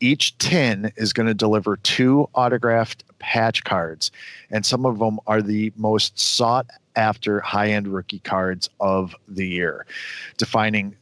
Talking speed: 145 wpm